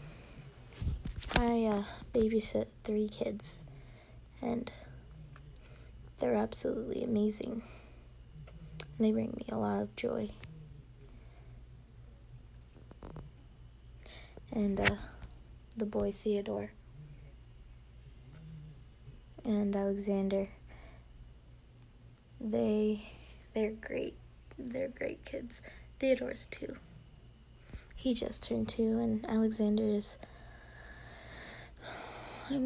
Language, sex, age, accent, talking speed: English, female, 20-39, American, 70 wpm